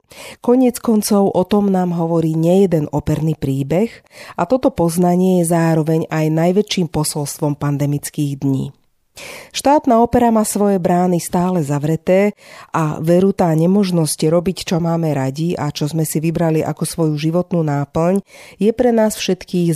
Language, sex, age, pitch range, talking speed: Slovak, female, 40-59, 150-200 Hz, 140 wpm